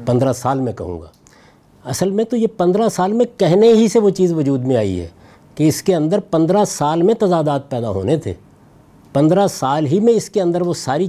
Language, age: Urdu, 50-69